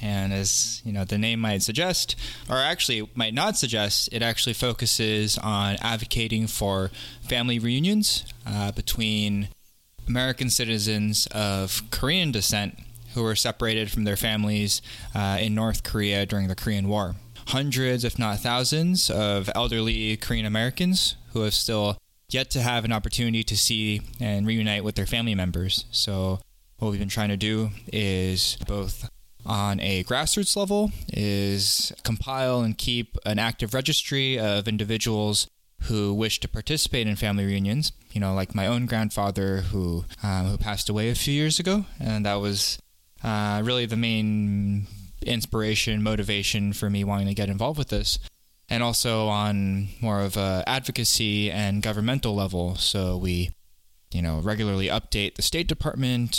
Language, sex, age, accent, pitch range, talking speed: English, male, 20-39, American, 100-115 Hz, 155 wpm